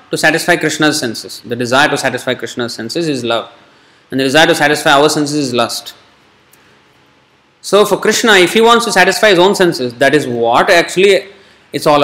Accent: Indian